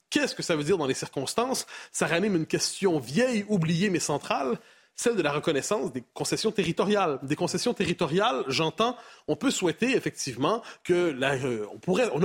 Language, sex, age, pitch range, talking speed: French, male, 30-49, 155-220 Hz, 180 wpm